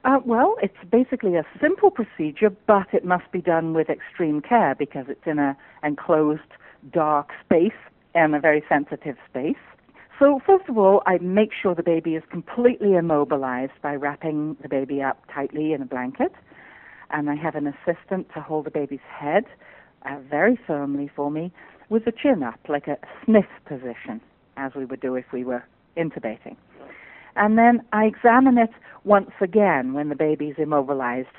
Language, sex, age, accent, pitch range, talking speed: English, female, 50-69, British, 140-205 Hz, 170 wpm